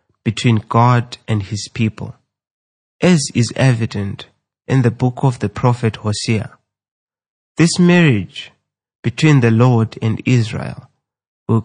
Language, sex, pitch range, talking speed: English, male, 110-135 Hz, 120 wpm